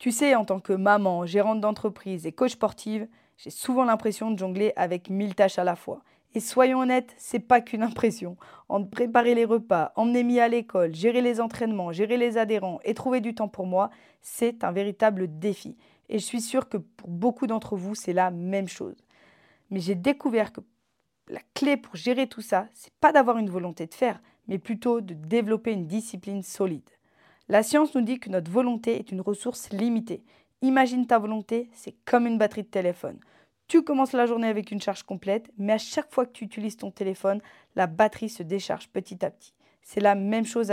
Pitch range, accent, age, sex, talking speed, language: 195-235 Hz, French, 20-39, female, 205 wpm, French